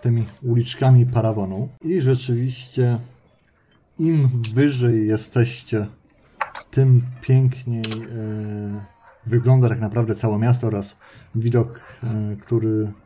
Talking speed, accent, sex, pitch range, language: 85 wpm, native, male, 110-125 Hz, Polish